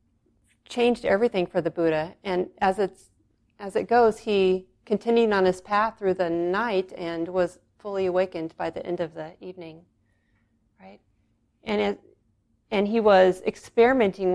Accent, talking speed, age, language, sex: American, 150 wpm, 40-59, English, female